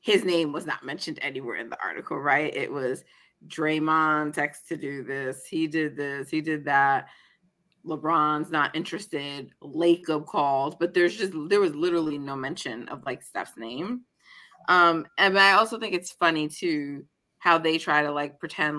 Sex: female